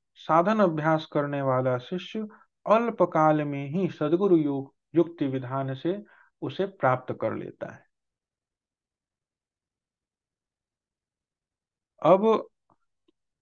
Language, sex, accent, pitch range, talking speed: Hindi, male, native, 135-185 Hz, 85 wpm